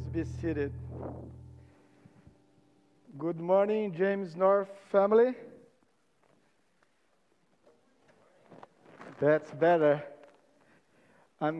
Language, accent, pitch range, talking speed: English, Brazilian, 180-225 Hz, 50 wpm